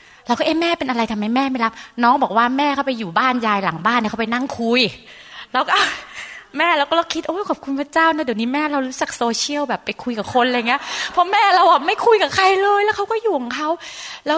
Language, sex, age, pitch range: Thai, female, 20-39, 200-270 Hz